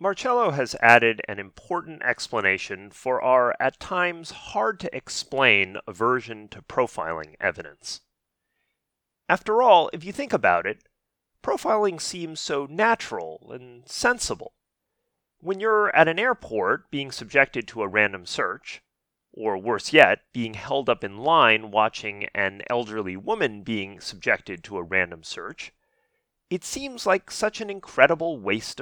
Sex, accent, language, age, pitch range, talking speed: male, American, English, 30-49, 120-200 Hz, 135 wpm